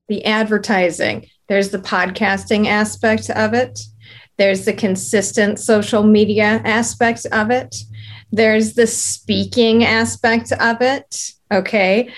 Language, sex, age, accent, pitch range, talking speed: English, female, 40-59, American, 210-245 Hz, 115 wpm